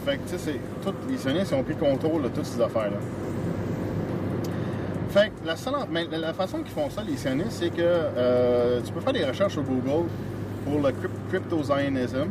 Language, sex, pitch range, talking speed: French, male, 105-130 Hz, 185 wpm